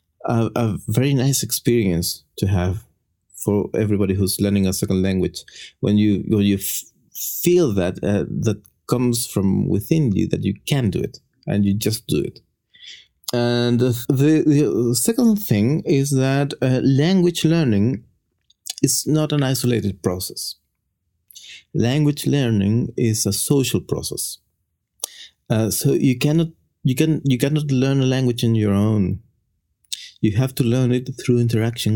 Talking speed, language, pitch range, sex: 150 wpm, English, 105-135 Hz, male